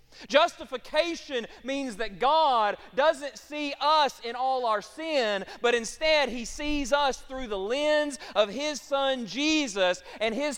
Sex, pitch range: male, 200-290 Hz